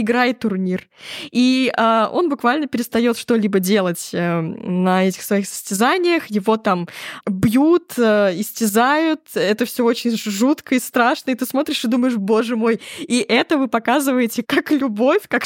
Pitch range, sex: 215-265 Hz, female